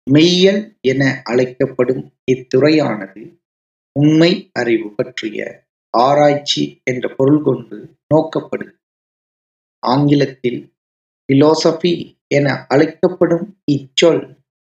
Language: Tamil